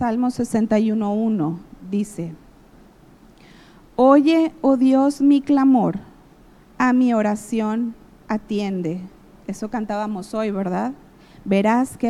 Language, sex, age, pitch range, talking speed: Spanish, female, 40-59, 205-270 Hz, 90 wpm